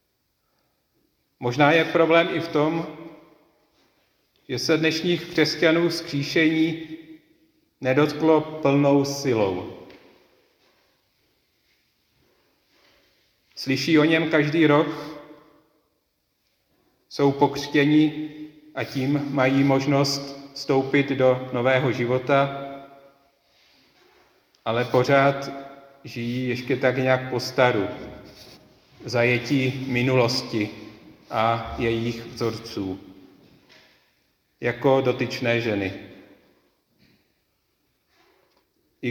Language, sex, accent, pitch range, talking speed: Czech, male, native, 125-150 Hz, 70 wpm